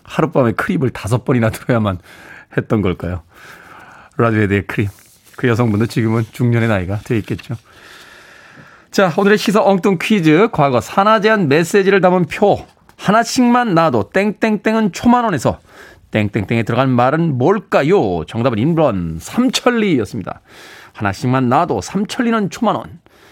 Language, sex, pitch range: Korean, male, 115-185 Hz